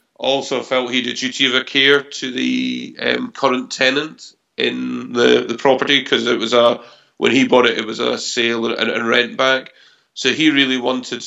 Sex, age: male, 40-59